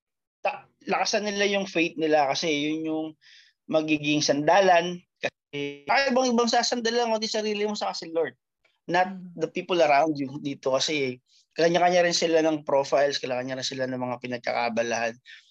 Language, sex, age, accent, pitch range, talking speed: Filipino, male, 20-39, native, 135-170 Hz, 145 wpm